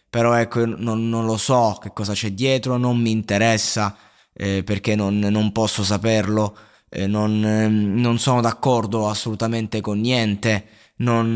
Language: Italian